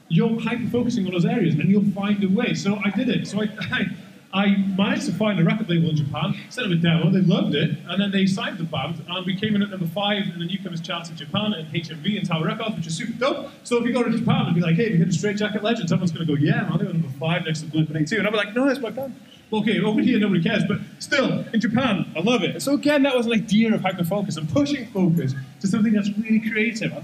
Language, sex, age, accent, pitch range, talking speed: English, male, 20-39, British, 170-215 Hz, 285 wpm